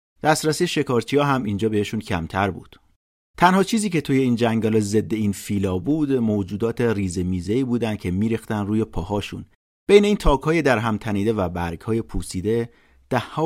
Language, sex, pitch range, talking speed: Persian, male, 95-130 Hz, 165 wpm